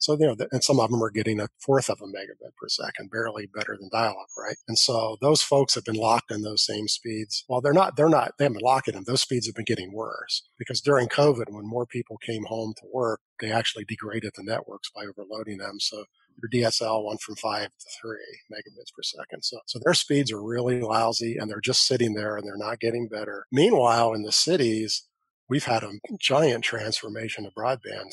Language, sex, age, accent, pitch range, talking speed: English, male, 40-59, American, 110-125 Hz, 225 wpm